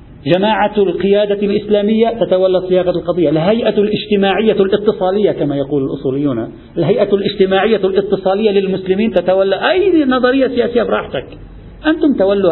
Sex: male